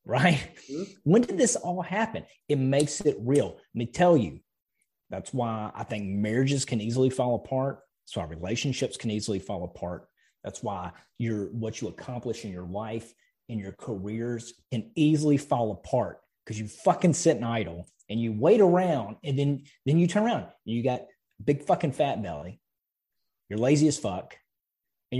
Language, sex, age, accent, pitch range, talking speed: English, male, 30-49, American, 110-150 Hz, 175 wpm